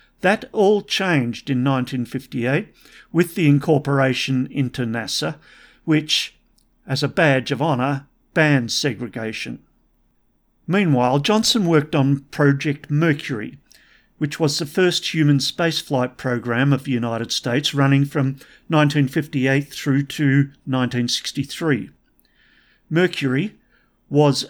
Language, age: English, 50-69